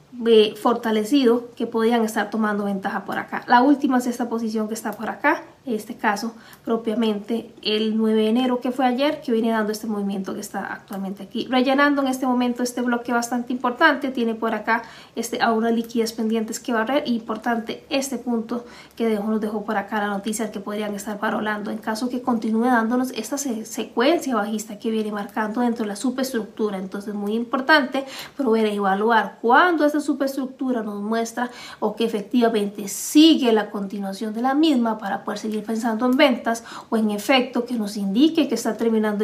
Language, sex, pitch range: Spanish, female, 215-250 Hz